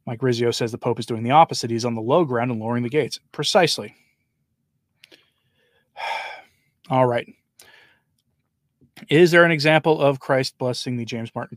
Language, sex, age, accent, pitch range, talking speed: English, male, 20-39, American, 120-145 Hz, 160 wpm